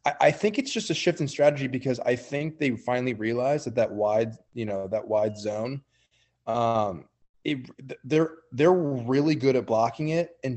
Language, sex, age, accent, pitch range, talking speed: English, male, 20-39, American, 110-140 Hz, 175 wpm